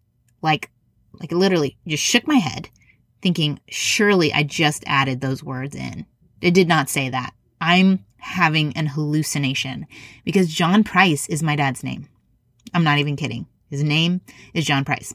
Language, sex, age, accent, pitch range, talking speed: English, female, 30-49, American, 140-195 Hz, 160 wpm